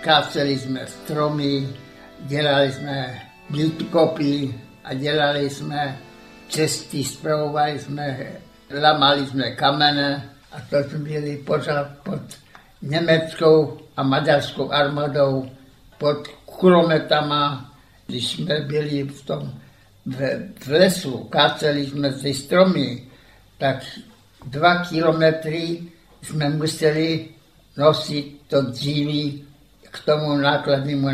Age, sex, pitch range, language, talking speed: 60-79, male, 140-155 Hz, Czech, 95 wpm